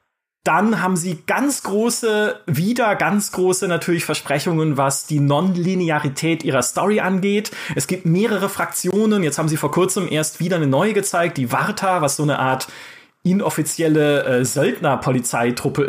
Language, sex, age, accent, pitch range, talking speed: German, male, 30-49, German, 160-205 Hz, 145 wpm